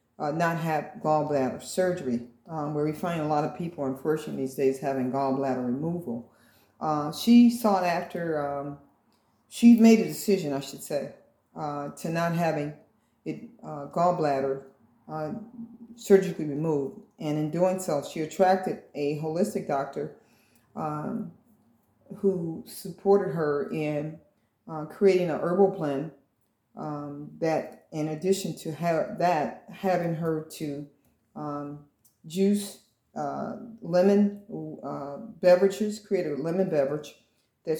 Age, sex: 40-59, female